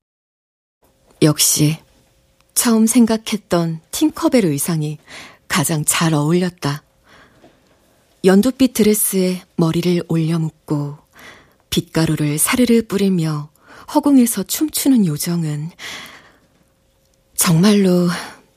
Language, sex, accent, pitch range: Korean, female, native, 155-215 Hz